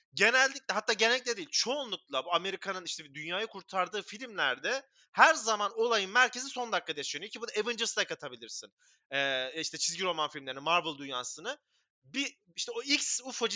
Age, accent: 30-49, native